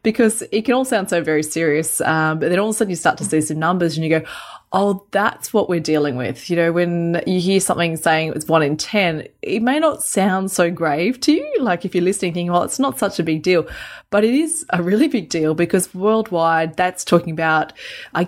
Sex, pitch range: female, 160-200 Hz